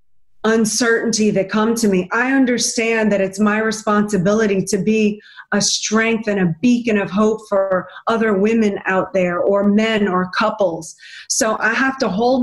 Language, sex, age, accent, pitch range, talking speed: English, female, 30-49, American, 200-270 Hz, 165 wpm